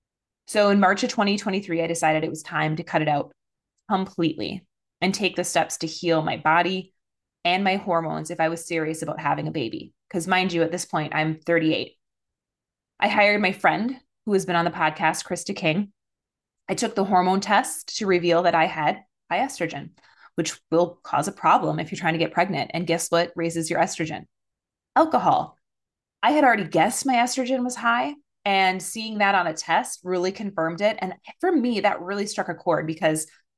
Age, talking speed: 20-39, 195 wpm